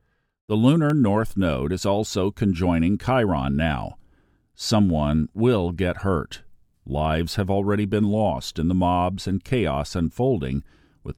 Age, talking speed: 50-69, 135 wpm